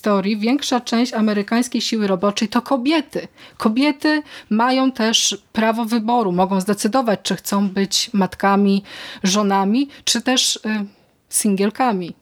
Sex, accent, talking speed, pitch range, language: female, native, 110 wpm, 195-235 Hz, Polish